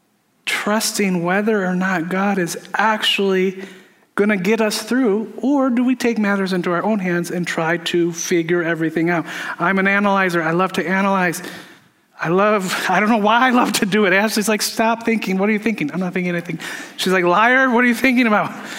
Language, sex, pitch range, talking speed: English, male, 180-235 Hz, 210 wpm